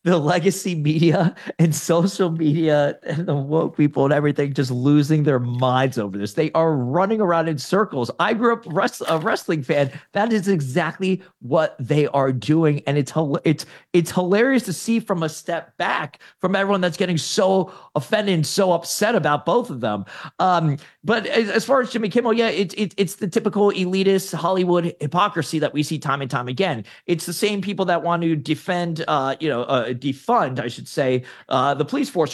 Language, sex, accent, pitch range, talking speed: English, male, American, 150-190 Hz, 195 wpm